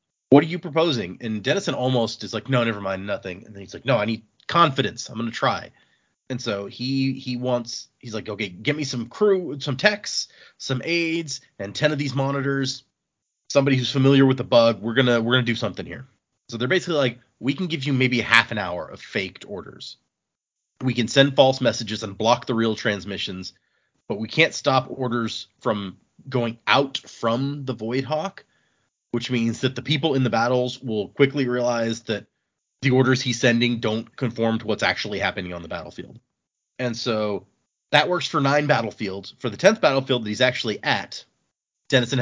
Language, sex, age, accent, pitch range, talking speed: English, male, 30-49, American, 110-140 Hz, 195 wpm